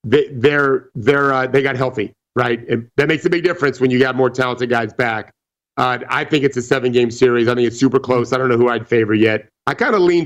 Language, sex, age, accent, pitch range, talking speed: English, male, 40-59, American, 125-150 Hz, 255 wpm